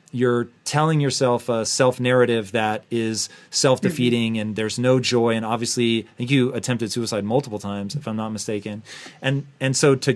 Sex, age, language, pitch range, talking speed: male, 30-49, English, 115-140 Hz, 170 wpm